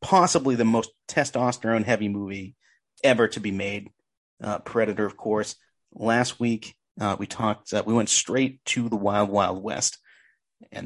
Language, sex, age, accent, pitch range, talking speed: English, male, 30-49, American, 105-125 Hz, 155 wpm